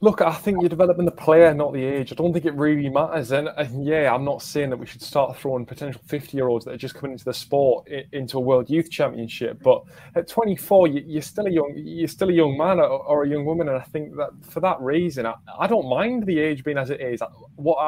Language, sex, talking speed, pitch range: English, male, 250 wpm, 130-160 Hz